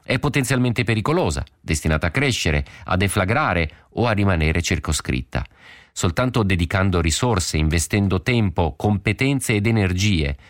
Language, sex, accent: Italian, male, native